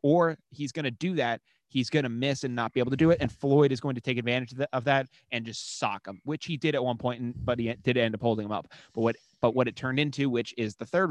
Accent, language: American, English